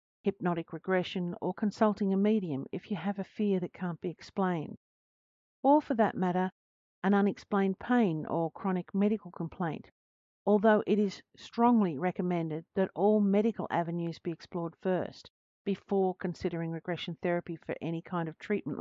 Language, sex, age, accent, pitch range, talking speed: English, female, 50-69, Australian, 170-205 Hz, 150 wpm